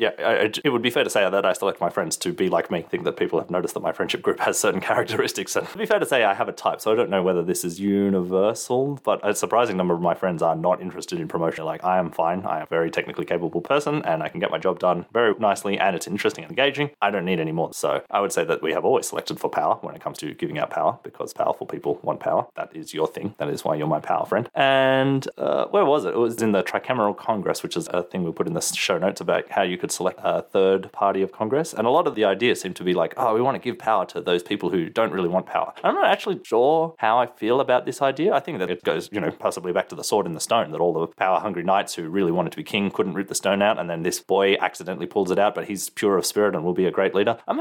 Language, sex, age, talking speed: English, male, 30-49, 300 wpm